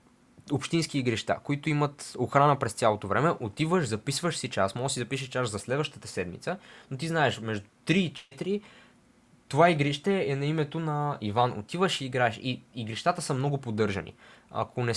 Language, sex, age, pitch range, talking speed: Bulgarian, male, 20-39, 125-155 Hz, 175 wpm